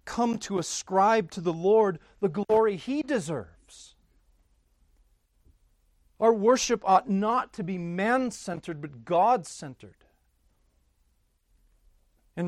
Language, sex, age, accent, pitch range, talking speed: English, male, 40-59, American, 145-210 Hz, 95 wpm